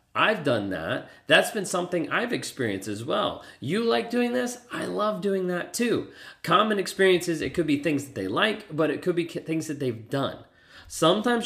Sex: male